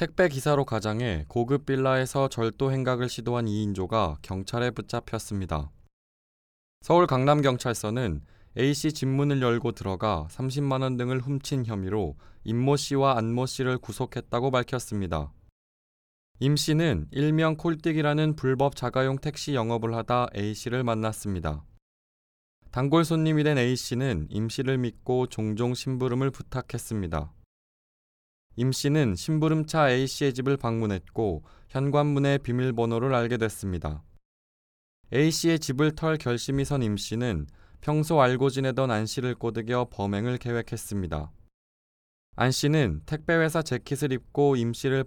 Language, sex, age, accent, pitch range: Korean, male, 20-39, native, 110-140 Hz